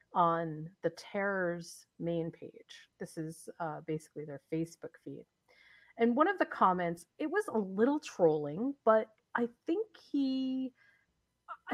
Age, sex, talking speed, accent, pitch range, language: 40-59, female, 130 wpm, American, 165-235 Hz, English